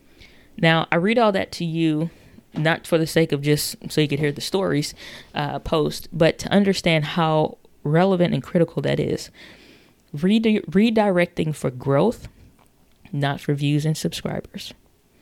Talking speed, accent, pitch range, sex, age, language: 150 wpm, American, 145-180 Hz, female, 20-39, English